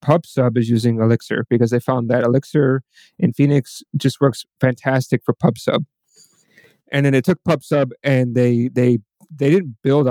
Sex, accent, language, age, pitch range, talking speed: male, American, English, 30-49, 120-140 Hz, 160 wpm